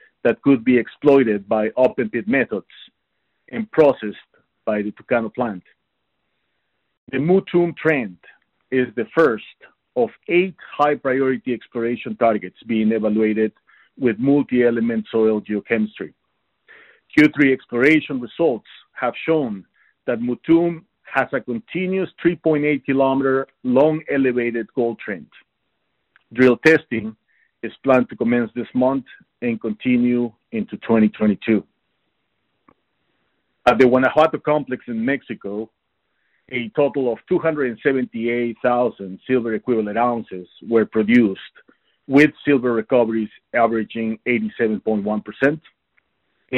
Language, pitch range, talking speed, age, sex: English, 110-135 Hz, 105 wpm, 50-69, male